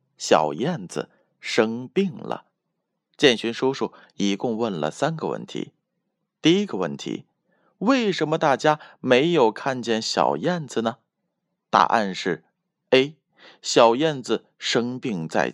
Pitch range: 110-180 Hz